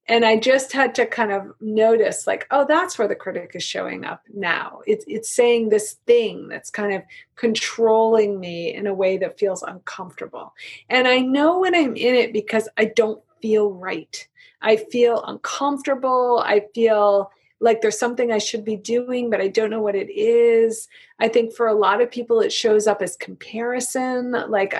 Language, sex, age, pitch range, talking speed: English, female, 30-49, 210-260 Hz, 190 wpm